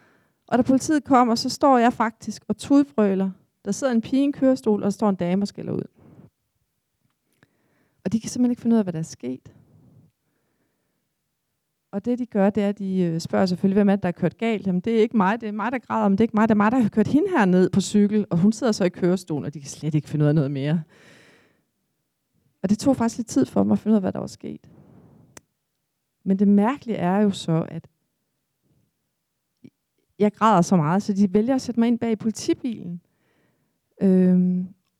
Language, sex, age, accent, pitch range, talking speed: Danish, female, 30-49, native, 180-240 Hz, 225 wpm